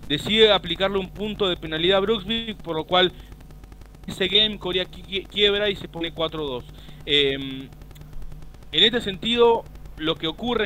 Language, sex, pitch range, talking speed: Spanish, male, 150-190 Hz, 145 wpm